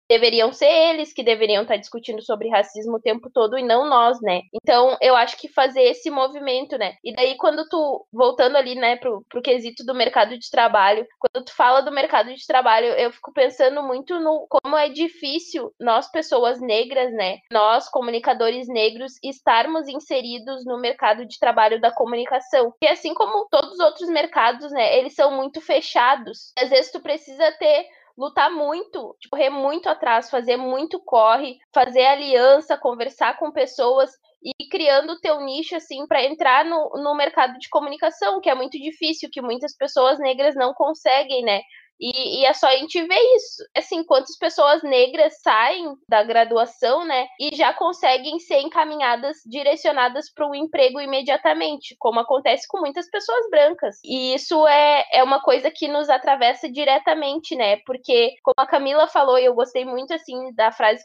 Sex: female